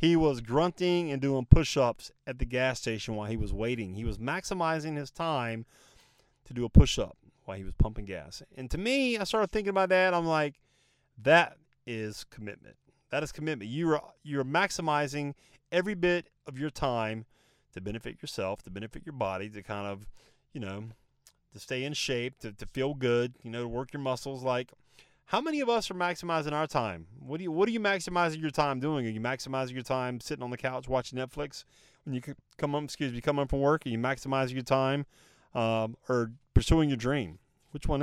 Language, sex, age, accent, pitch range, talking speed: English, male, 30-49, American, 120-155 Hz, 205 wpm